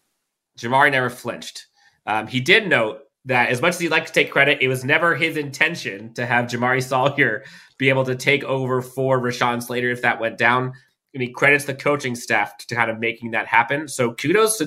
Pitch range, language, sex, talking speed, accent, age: 115-135 Hz, English, male, 215 wpm, American, 30-49